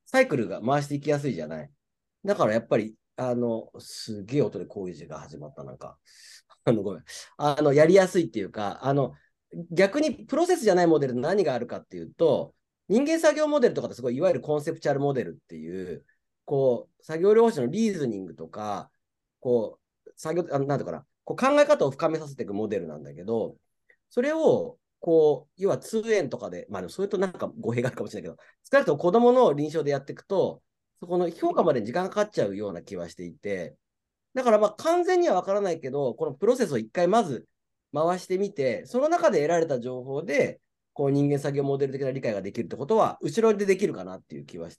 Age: 40-59